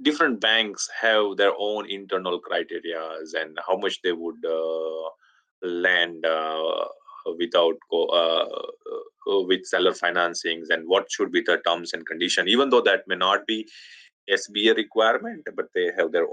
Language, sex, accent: English, male, Indian